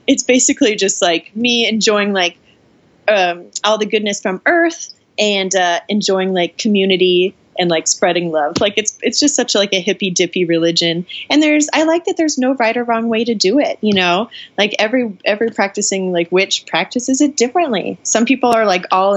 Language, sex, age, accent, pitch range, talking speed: English, female, 20-39, American, 185-245 Hz, 195 wpm